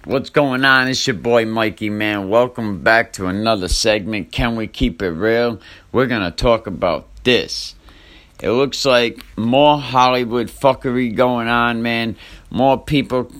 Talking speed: 155 wpm